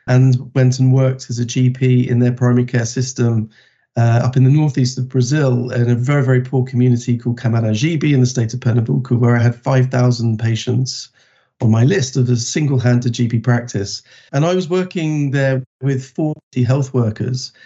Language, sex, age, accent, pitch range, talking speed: English, male, 40-59, British, 120-135 Hz, 185 wpm